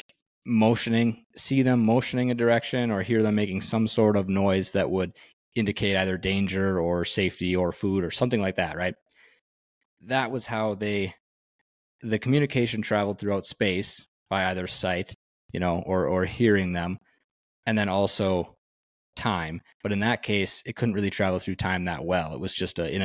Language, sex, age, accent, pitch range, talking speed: English, male, 20-39, American, 90-105 Hz, 170 wpm